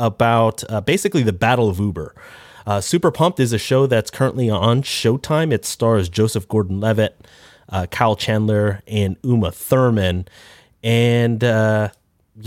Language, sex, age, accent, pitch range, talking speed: English, male, 30-49, American, 105-130 Hz, 140 wpm